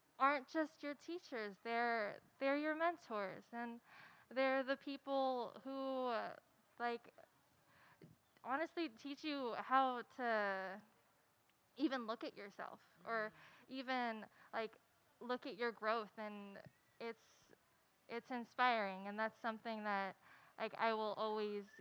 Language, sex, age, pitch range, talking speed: English, female, 10-29, 215-260 Hz, 120 wpm